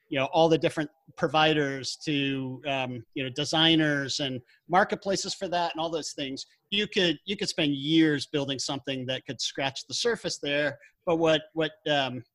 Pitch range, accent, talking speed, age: 135-165 Hz, American, 180 wpm, 40-59